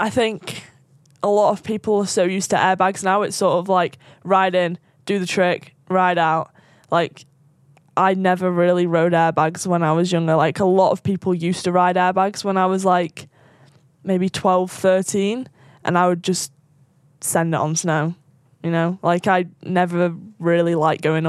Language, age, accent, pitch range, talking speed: English, 10-29, British, 155-185 Hz, 185 wpm